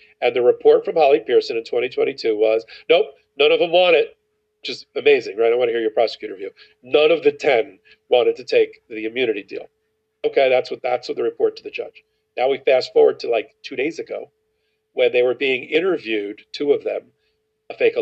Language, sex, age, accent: English, male, 40-59, American